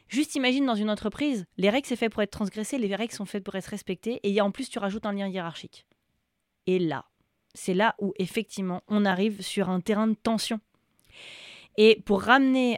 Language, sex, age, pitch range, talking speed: French, female, 20-39, 195-230 Hz, 200 wpm